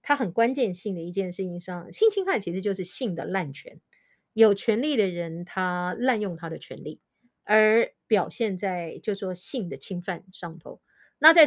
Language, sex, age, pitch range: Chinese, female, 30-49, 180-240 Hz